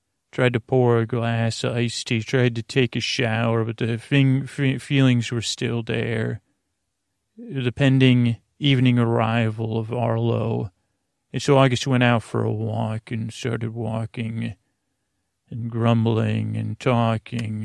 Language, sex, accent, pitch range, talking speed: English, male, American, 110-125 Hz, 145 wpm